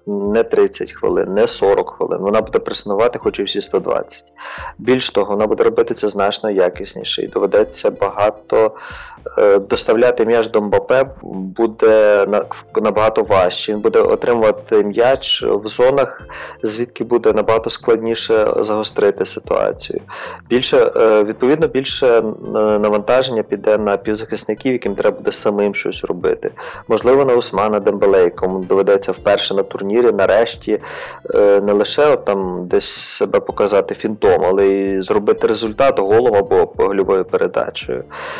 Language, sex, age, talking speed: Ukrainian, male, 30-49, 125 wpm